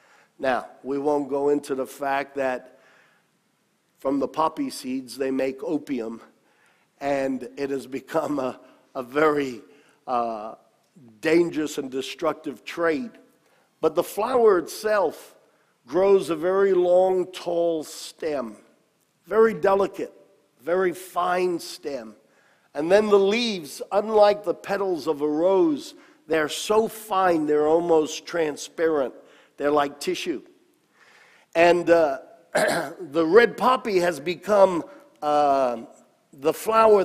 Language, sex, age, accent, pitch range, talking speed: English, male, 50-69, American, 155-210 Hz, 115 wpm